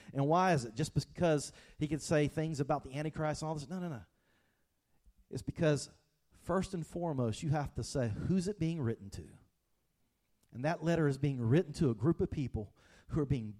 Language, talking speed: English, 210 wpm